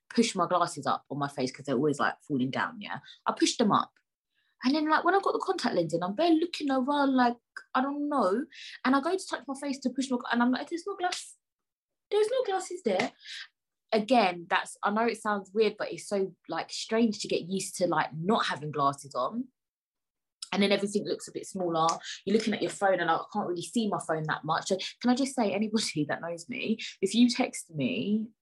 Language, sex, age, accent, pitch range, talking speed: English, female, 20-39, British, 155-240 Hz, 235 wpm